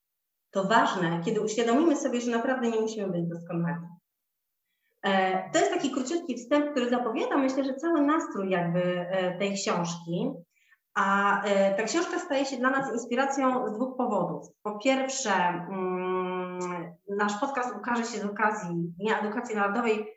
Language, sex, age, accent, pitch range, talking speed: Polish, female, 30-49, native, 190-245 Hz, 140 wpm